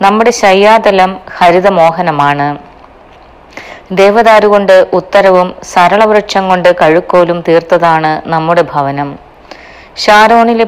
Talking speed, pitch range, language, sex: 75 wpm, 160-195 Hz, Malayalam, female